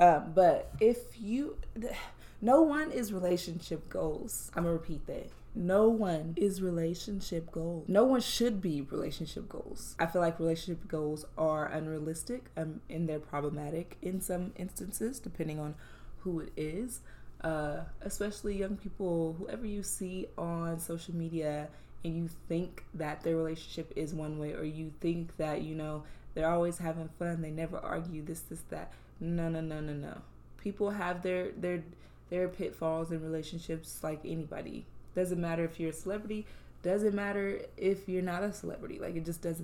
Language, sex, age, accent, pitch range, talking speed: English, female, 20-39, American, 160-190 Hz, 170 wpm